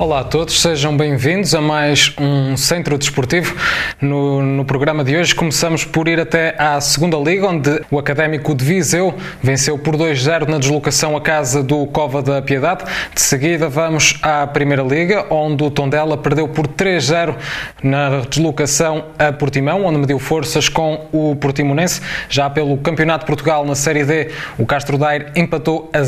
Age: 20-39